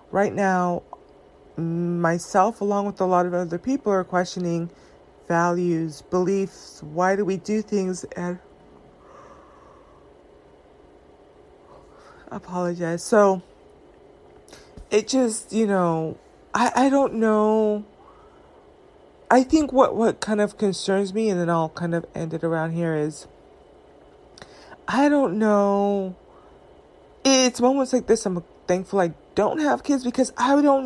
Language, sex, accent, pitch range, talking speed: English, female, American, 175-220 Hz, 125 wpm